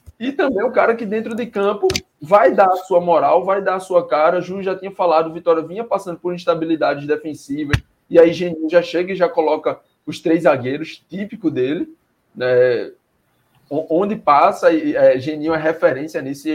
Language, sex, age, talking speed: Portuguese, male, 20-39, 180 wpm